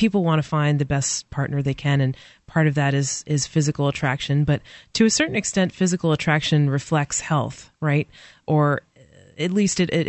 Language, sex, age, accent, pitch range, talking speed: English, female, 30-49, American, 140-165 Hz, 190 wpm